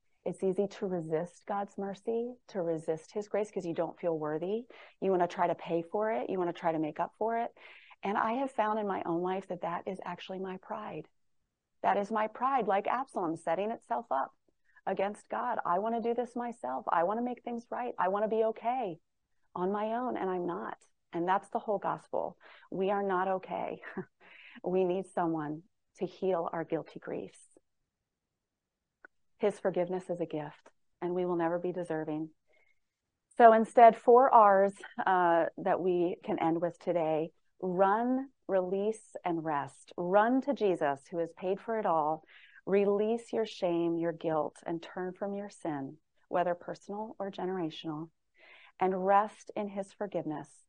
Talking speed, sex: 180 wpm, female